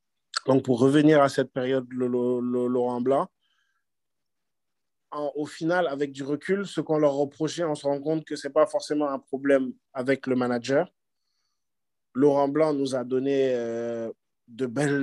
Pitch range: 120-140 Hz